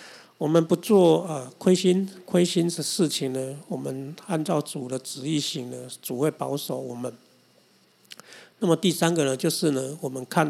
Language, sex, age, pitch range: Chinese, male, 50-69, 140-165 Hz